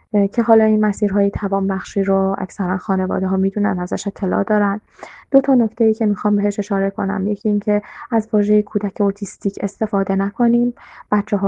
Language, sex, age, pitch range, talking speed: Persian, female, 10-29, 195-225 Hz, 155 wpm